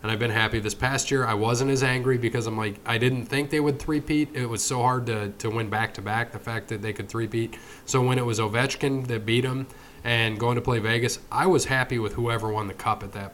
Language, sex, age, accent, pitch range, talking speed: English, male, 20-39, American, 110-130 Hz, 255 wpm